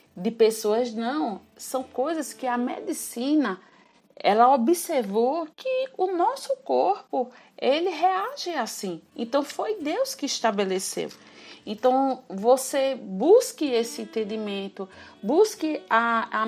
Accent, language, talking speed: Brazilian, Portuguese, 110 wpm